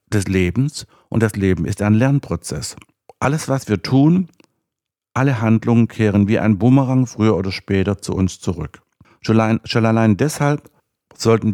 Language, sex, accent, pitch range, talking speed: German, male, German, 95-120 Hz, 145 wpm